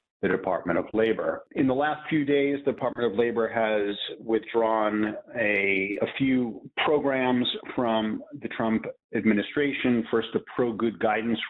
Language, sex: English, male